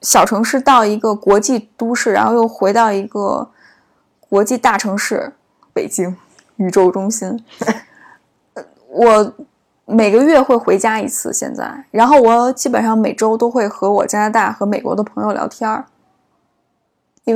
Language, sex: Chinese, female